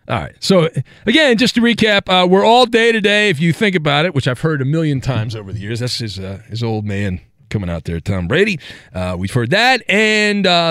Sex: male